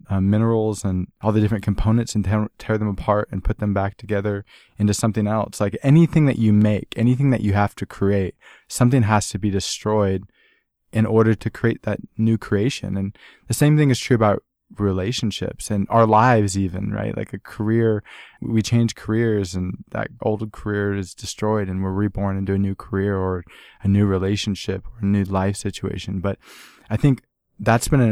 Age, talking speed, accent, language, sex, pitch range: 20-39, 190 wpm, American, English, male, 100-120 Hz